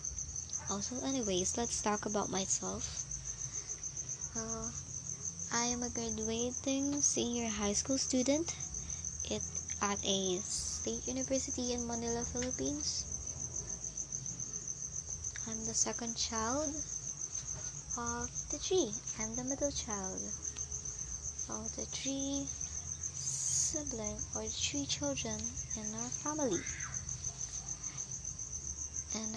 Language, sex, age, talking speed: English, male, 20-39, 90 wpm